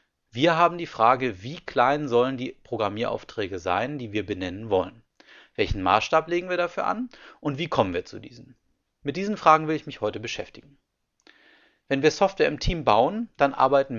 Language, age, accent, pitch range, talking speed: German, 30-49, German, 120-165 Hz, 180 wpm